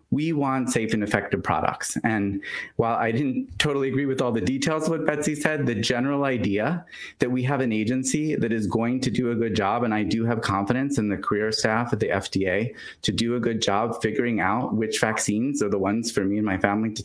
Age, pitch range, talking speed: 30-49, 105-130 Hz, 230 wpm